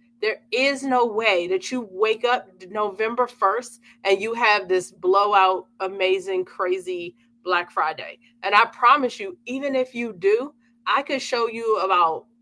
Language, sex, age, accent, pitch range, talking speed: English, female, 30-49, American, 210-275 Hz, 155 wpm